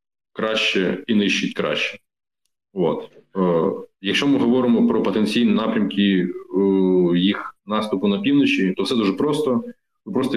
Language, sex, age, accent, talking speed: Ukrainian, male, 20-39, native, 135 wpm